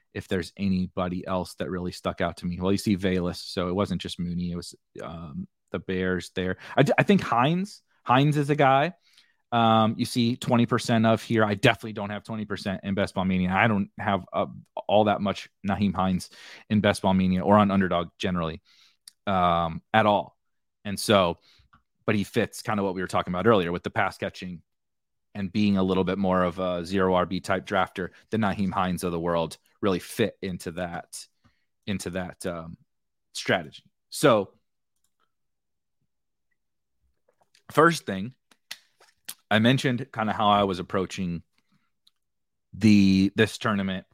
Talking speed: 170 wpm